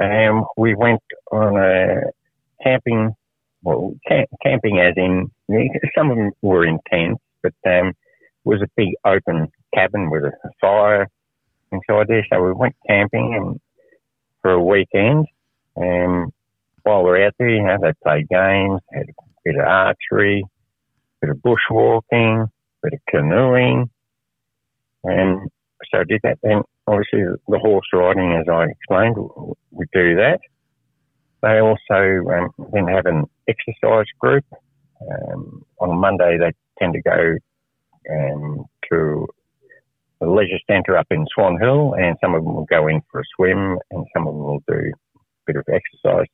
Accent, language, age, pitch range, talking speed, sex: American, English, 60-79, 90-120 Hz, 160 wpm, male